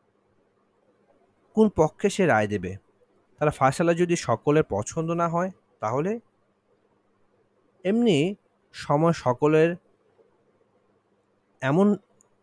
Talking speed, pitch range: 80 wpm, 110-170 Hz